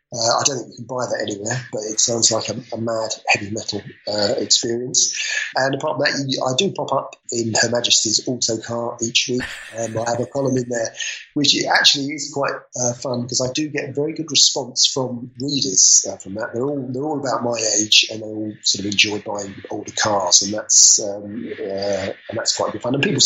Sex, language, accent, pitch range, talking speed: male, English, British, 115-135 Hz, 225 wpm